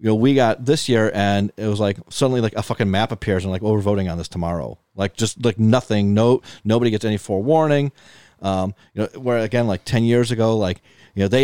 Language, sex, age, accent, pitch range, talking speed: English, male, 30-49, American, 95-120 Hz, 240 wpm